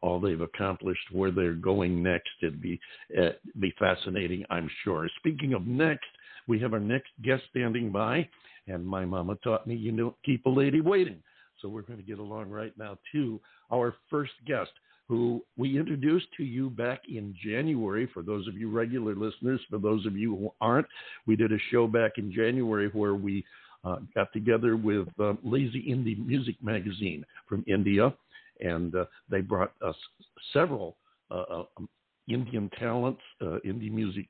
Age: 60-79